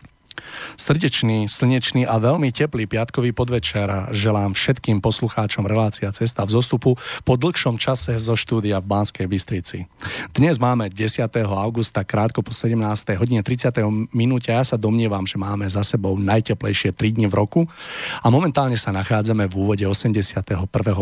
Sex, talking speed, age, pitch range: male, 150 wpm, 40-59, 105-125 Hz